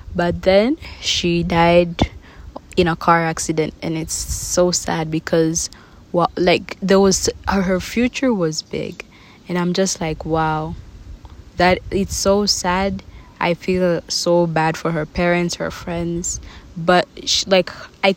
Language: English